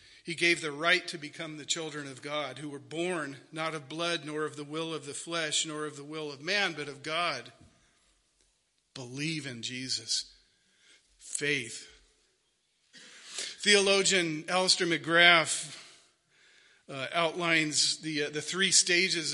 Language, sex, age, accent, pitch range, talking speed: English, male, 50-69, American, 150-180 Hz, 145 wpm